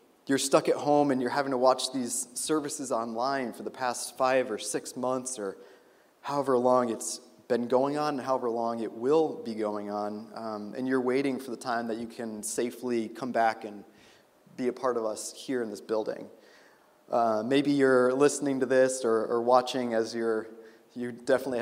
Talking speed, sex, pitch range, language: 195 wpm, male, 120-155 Hz, English